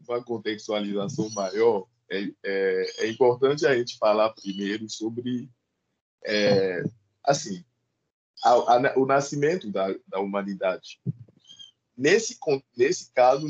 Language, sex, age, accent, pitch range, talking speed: Portuguese, male, 20-39, Brazilian, 110-150 Hz, 105 wpm